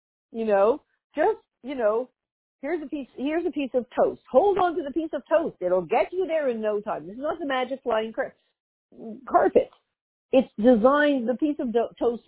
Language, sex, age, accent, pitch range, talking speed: English, female, 50-69, American, 165-240 Hz, 200 wpm